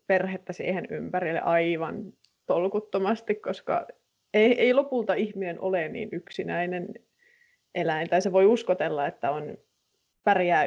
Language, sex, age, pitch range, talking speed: Finnish, female, 20-39, 175-210 Hz, 120 wpm